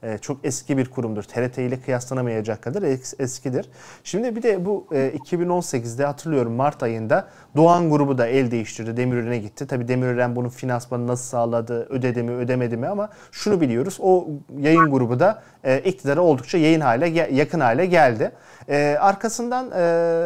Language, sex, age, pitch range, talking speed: Turkish, male, 40-59, 130-165 Hz, 145 wpm